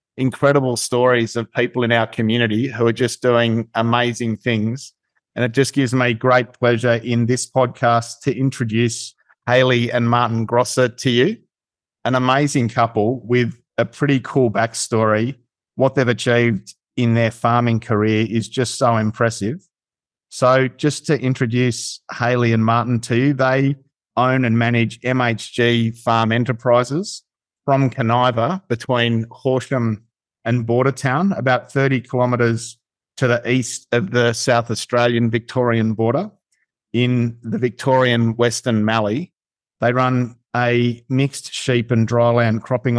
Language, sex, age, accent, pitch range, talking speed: English, male, 50-69, Australian, 115-130 Hz, 135 wpm